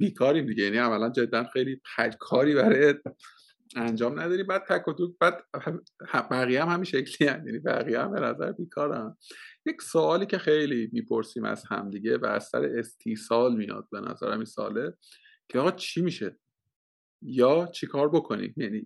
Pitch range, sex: 115-140 Hz, male